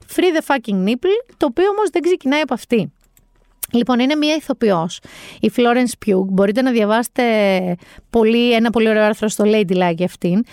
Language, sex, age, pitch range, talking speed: Greek, female, 30-49, 195-285 Hz, 165 wpm